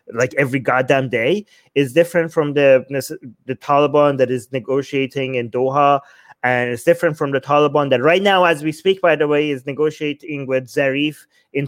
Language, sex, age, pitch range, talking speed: English, male, 30-49, 140-165 Hz, 180 wpm